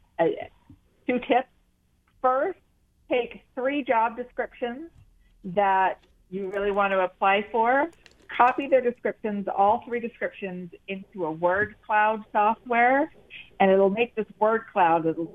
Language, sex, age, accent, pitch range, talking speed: English, female, 40-59, American, 175-220 Hz, 130 wpm